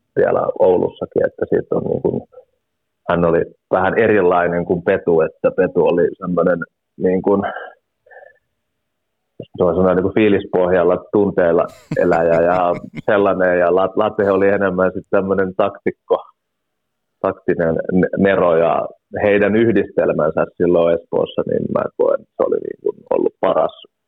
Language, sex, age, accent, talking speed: Finnish, male, 30-49, native, 120 wpm